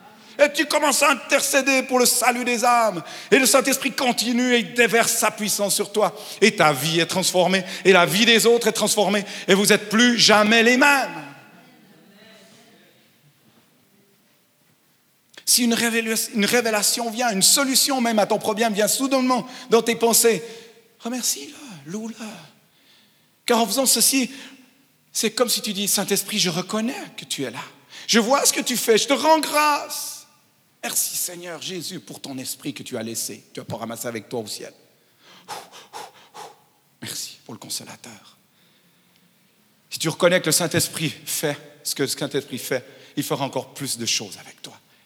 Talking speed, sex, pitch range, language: 170 wpm, male, 155-240 Hz, French